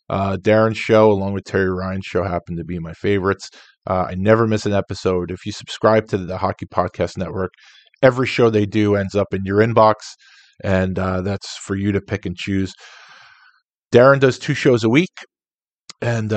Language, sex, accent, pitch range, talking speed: English, male, American, 95-110 Hz, 190 wpm